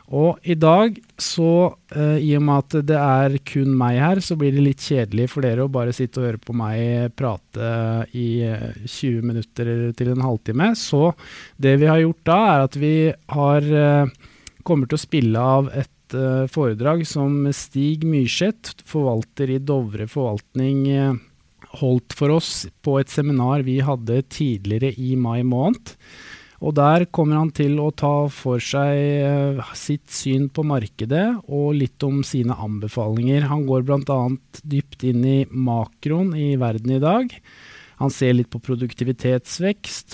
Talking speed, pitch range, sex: 150 wpm, 120-145 Hz, male